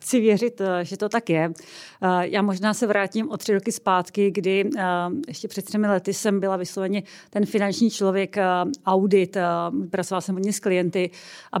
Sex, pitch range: female, 185-205 Hz